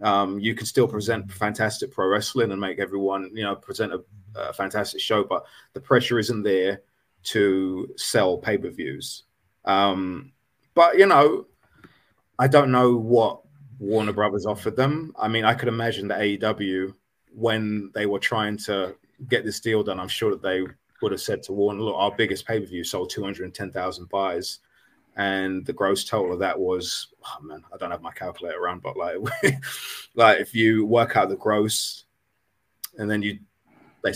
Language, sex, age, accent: English, male, 20-39, British